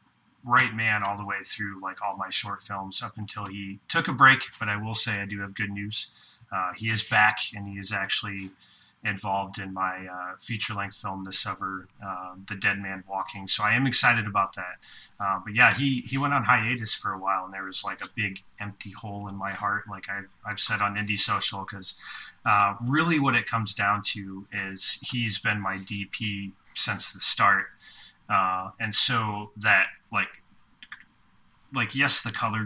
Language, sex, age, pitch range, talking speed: English, male, 20-39, 95-110 Hz, 200 wpm